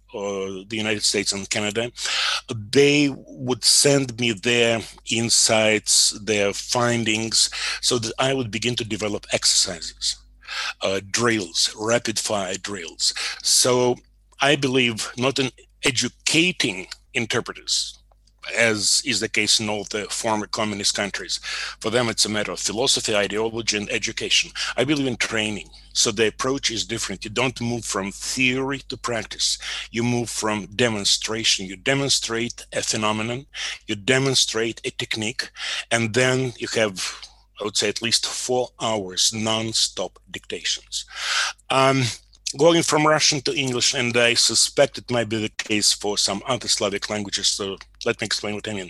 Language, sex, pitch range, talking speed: English, male, 105-130 Hz, 145 wpm